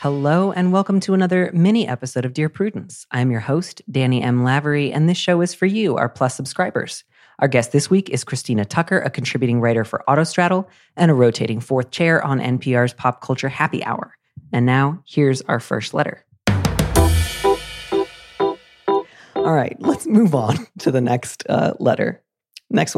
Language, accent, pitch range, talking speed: English, American, 125-180 Hz, 170 wpm